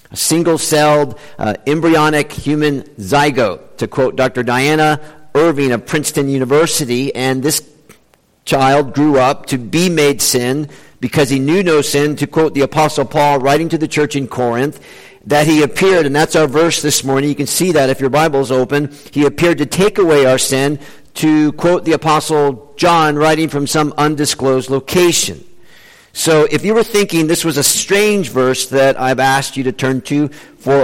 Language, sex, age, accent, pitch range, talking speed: English, male, 50-69, American, 145-175 Hz, 175 wpm